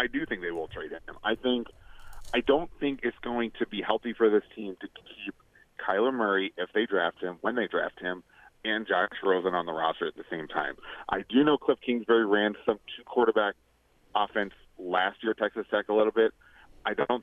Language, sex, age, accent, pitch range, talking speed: English, male, 30-49, American, 110-145 Hz, 210 wpm